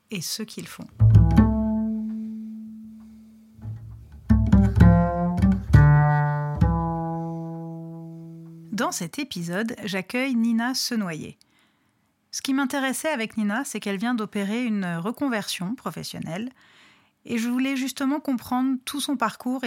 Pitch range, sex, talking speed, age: 175-235 Hz, female, 90 wpm, 30-49